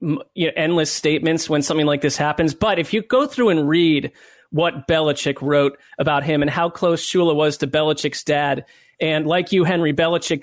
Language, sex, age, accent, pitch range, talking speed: English, male, 30-49, American, 155-190 Hz, 195 wpm